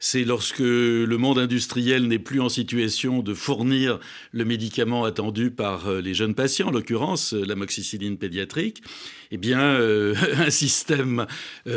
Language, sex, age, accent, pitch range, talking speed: French, male, 60-79, French, 115-140 Hz, 145 wpm